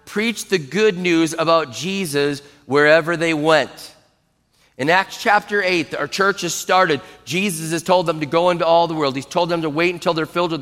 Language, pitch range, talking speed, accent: English, 165-190 Hz, 205 wpm, American